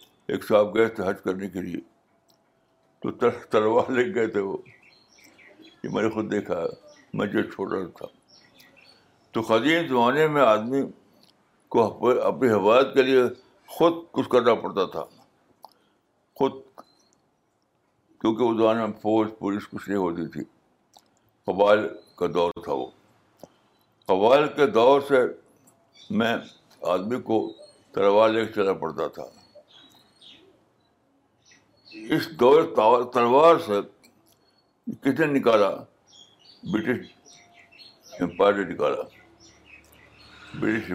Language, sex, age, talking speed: Urdu, male, 60-79, 115 wpm